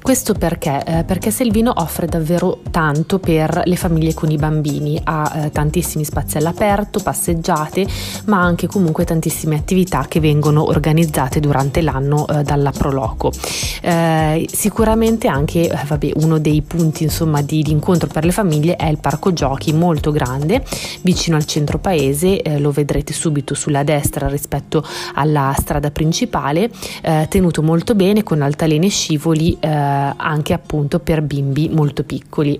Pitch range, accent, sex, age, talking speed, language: 150-180 Hz, native, female, 20-39, 155 wpm, Italian